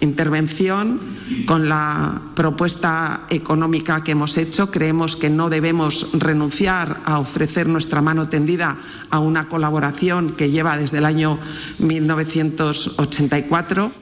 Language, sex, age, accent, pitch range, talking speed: Spanish, female, 40-59, Spanish, 155-180 Hz, 115 wpm